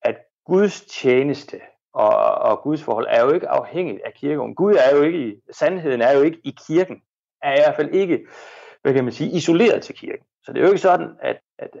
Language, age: Danish, 30-49